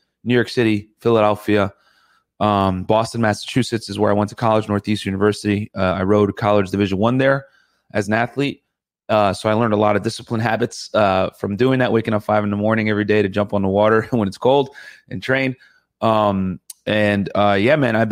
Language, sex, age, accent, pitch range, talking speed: English, male, 30-49, American, 105-120 Hz, 205 wpm